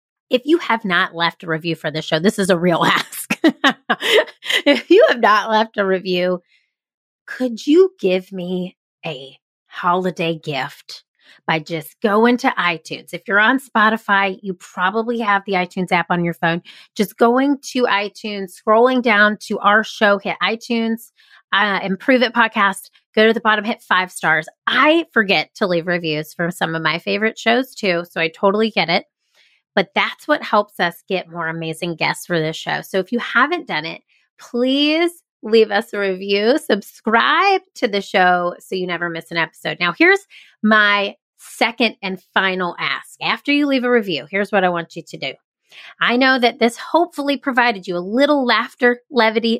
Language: English